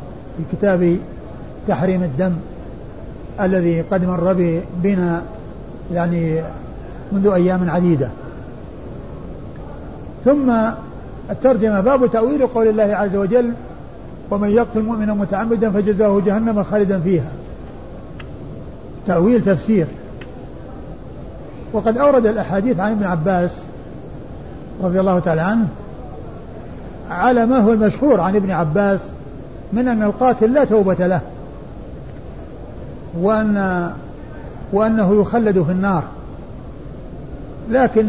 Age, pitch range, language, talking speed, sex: 50-69, 180-225 Hz, Arabic, 90 wpm, male